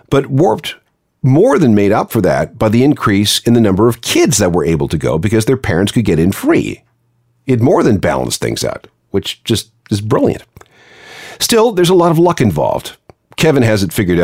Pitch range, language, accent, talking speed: 95-130 Hz, English, American, 205 wpm